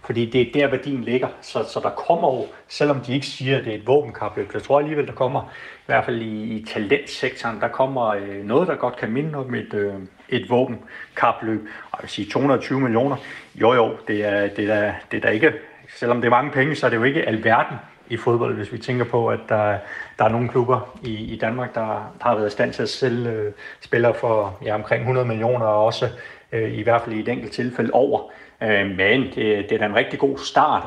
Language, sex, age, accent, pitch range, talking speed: Danish, male, 30-49, native, 105-125 Hz, 230 wpm